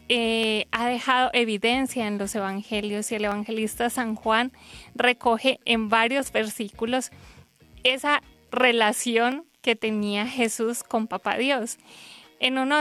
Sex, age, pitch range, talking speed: female, 20-39, 220-255 Hz, 120 wpm